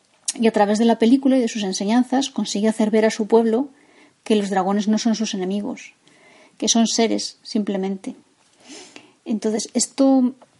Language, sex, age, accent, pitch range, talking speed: Spanish, female, 20-39, Spanish, 200-240 Hz, 165 wpm